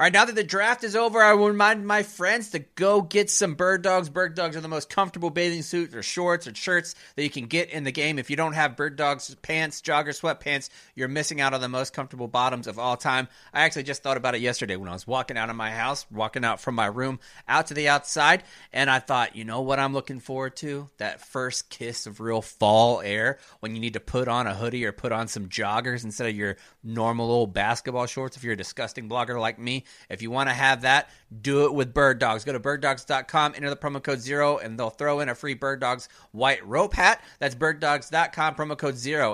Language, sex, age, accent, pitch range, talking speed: English, male, 30-49, American, 120-160 Hz, 245 wpm